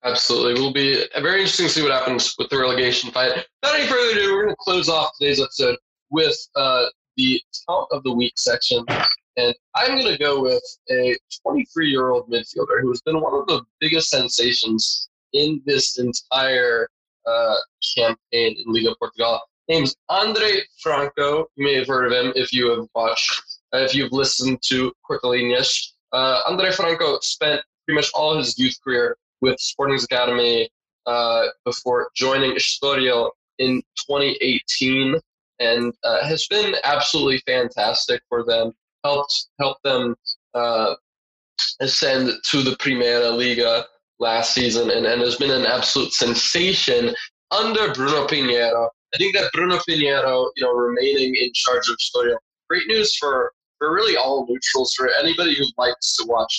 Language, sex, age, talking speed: English, male, 20-39, 165 wpm